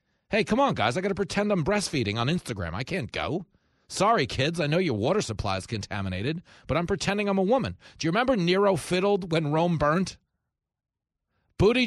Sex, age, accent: male, 40-59, American